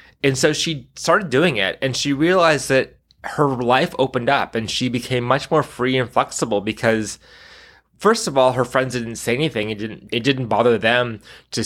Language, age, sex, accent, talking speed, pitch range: English, 20-39, male, American, 195 wpm, 115-140 Hz